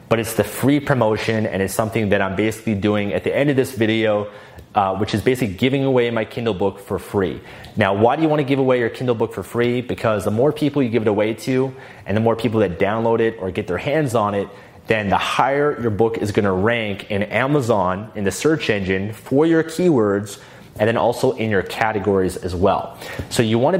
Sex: male